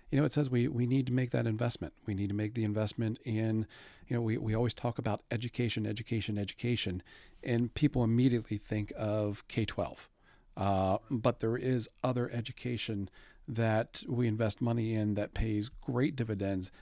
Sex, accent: male, American